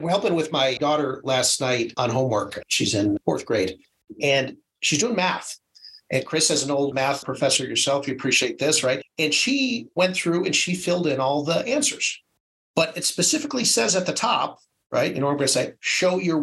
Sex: male